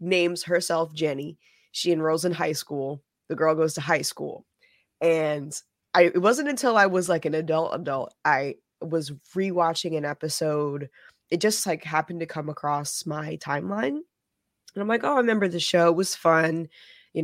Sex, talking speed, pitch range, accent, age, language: female, 175 wpm, 150-180 Hz, American, 20-39, English